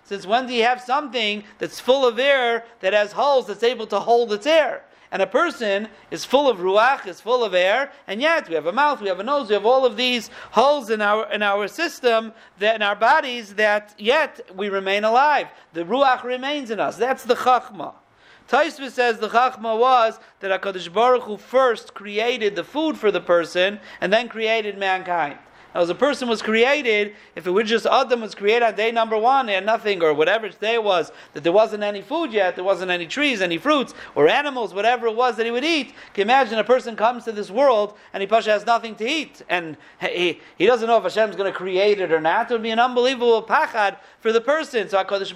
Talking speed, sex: 230 wpm, male